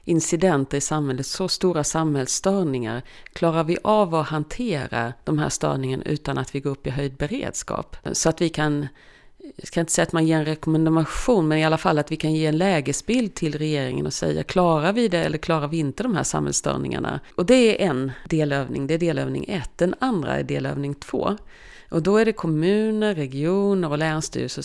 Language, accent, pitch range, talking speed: Swedish, native, 135-180 Hz, 195 wpm